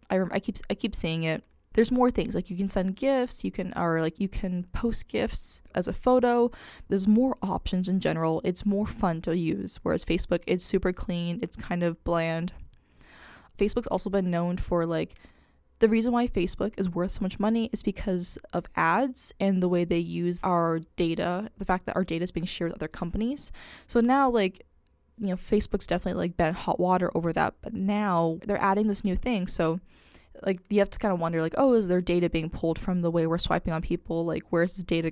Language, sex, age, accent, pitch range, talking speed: English, female, 10-29, American, 175-215 Hz, 215 wpm